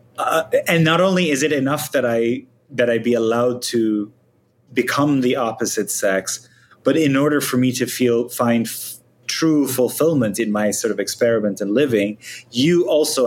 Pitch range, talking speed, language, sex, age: 105-135 Hz, 170 wpm, English, male, 30-49